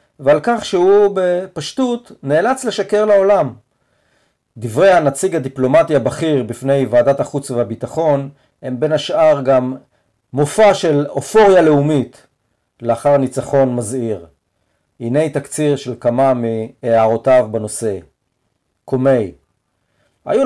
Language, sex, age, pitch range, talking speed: Hebrew, male, 40-59, 125-175 Hz, 100 wpm